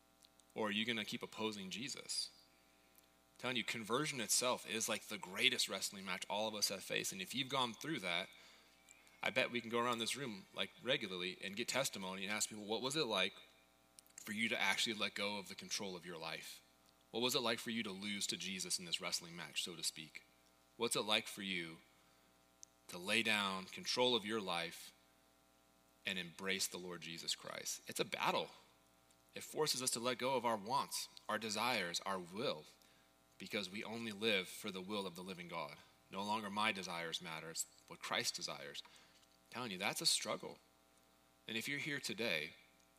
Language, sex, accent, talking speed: English, male, American, 200 wpm